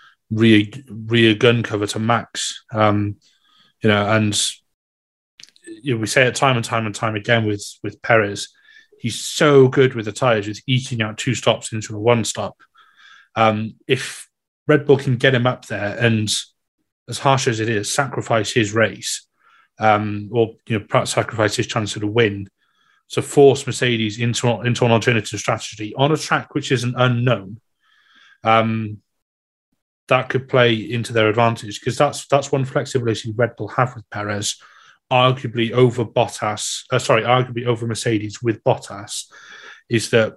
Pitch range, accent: 105-125 Hz, British